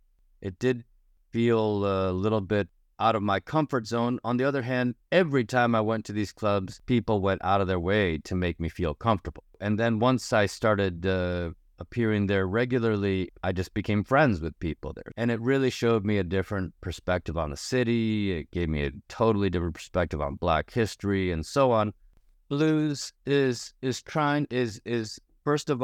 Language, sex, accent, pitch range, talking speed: English, male, American, 90-115 Hz, 190 wpm